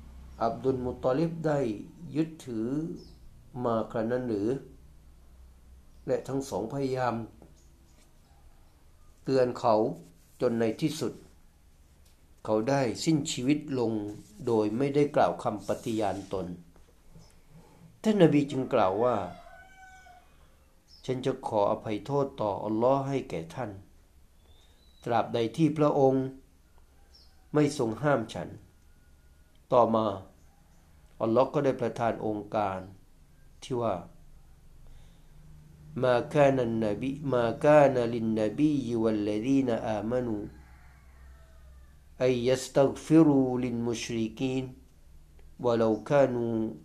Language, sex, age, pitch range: Thai, male, 60-79, 80-130 Hz